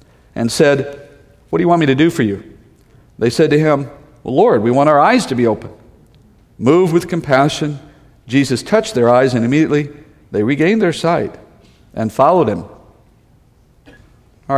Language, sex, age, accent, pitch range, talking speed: English, male, 50-69, American, 125-165 Hz, 170 wpm